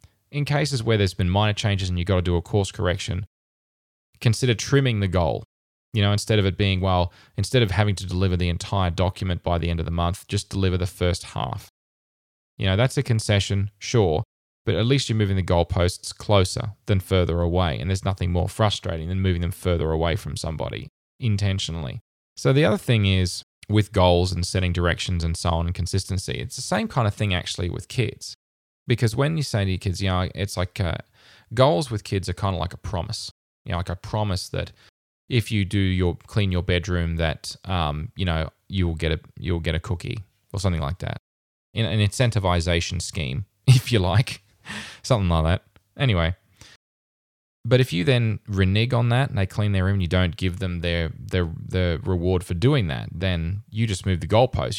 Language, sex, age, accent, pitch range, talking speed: English, male, 20-39, Australian, 90-110 Hz, 210 wpm